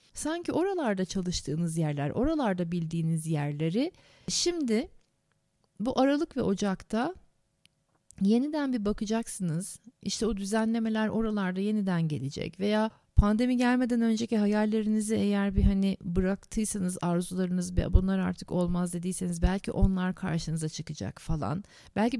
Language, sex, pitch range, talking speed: Turkish, female, 170-235 Hz, 110 wpm